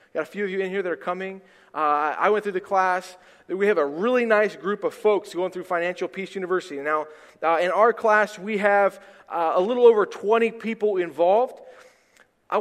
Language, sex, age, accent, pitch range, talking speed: English, male, 30-49, American, 175-225 Hz, 210 wpm